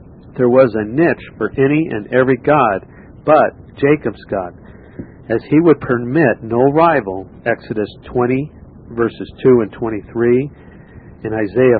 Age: 50-69